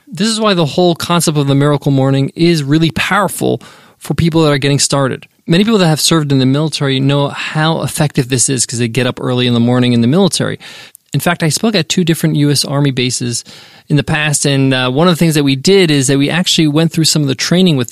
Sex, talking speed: male, 255 wpm